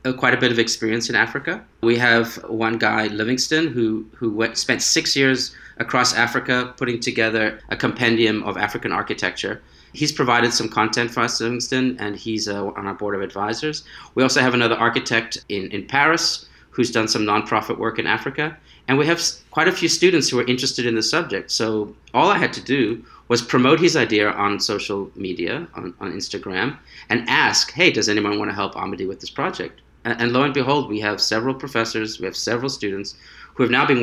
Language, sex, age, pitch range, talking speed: English, male, 30-49, 110-130 Hz, 200 wpm